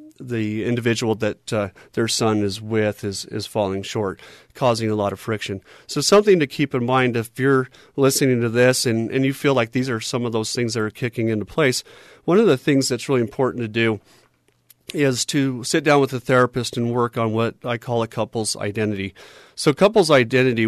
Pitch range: 110-130 Hz